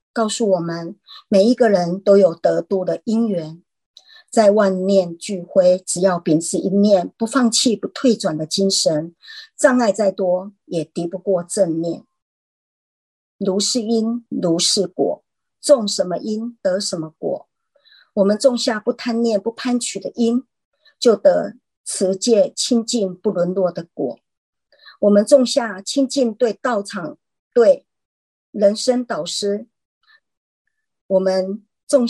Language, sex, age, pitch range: Chinese, male, 50-69, 185-245 Hz